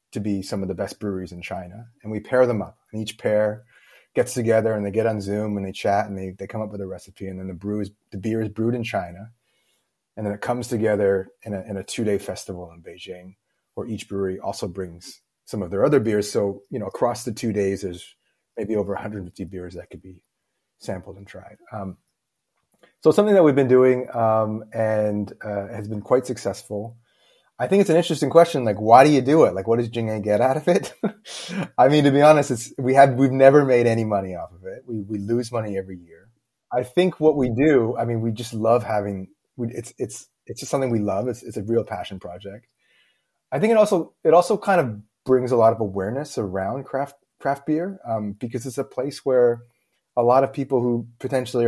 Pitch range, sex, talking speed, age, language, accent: 100-125 Hz, male, 230 wpm, 30-49, English, American